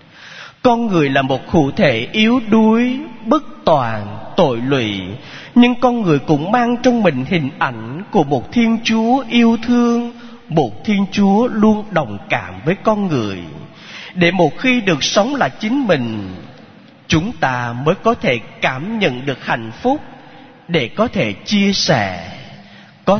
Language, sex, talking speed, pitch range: Vietnamese, male, 155 wpm, 115-175 Hz